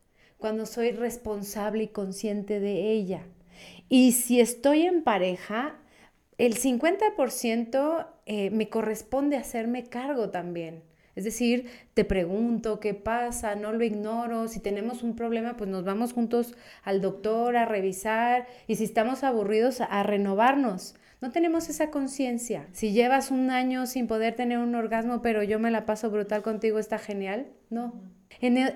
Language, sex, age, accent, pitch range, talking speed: Spanish, female, 30-49, Mexican, 205-250 Hz, 150 wpm